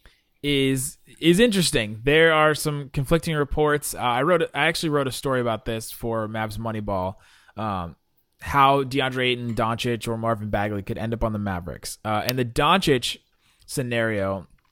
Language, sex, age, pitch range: English, male, 20-39, 110-145 Hz